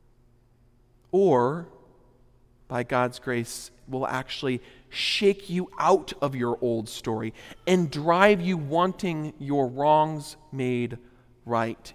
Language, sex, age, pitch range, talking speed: English, male, 40-59, 120-145 Hz, 105 wpm